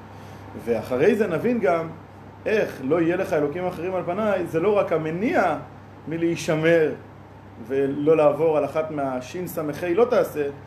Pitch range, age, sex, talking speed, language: 115-160 Hz, 30-49, male, 135 wpm, Hebrew